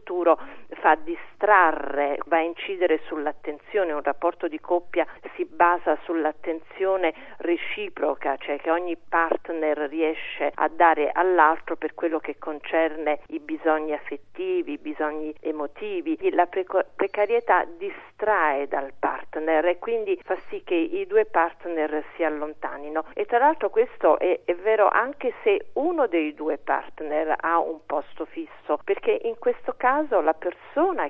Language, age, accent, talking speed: Italian, 40-59, native, 140 wpm